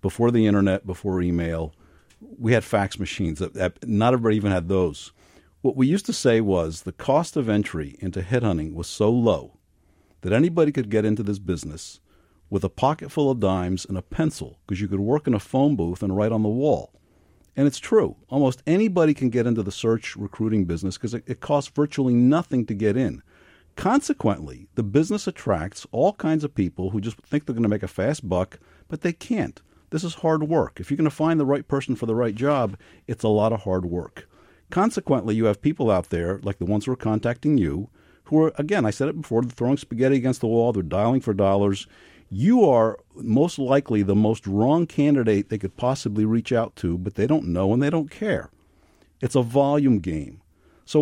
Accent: American